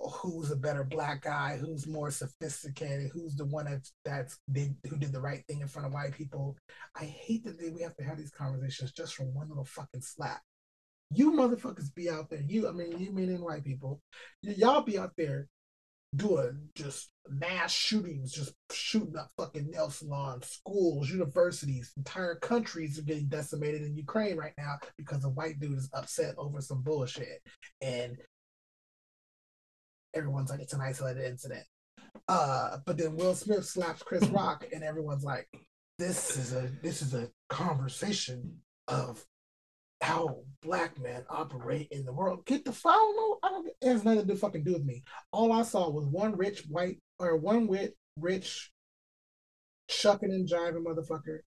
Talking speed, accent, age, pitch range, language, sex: 175 wpm, American, 30-49, 140-175 Hz, English, male